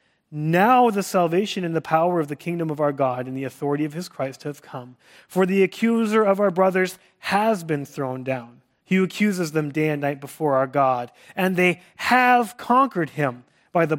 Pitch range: 135-185 Hz